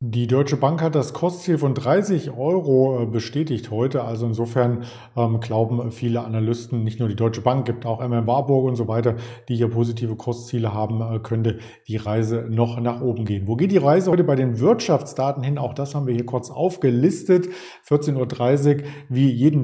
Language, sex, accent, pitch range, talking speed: German, male, German, 120-150 Hz, 185 wpm